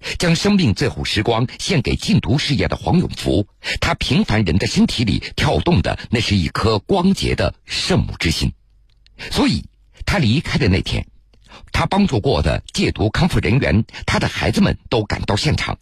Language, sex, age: Chinese, male, 50-69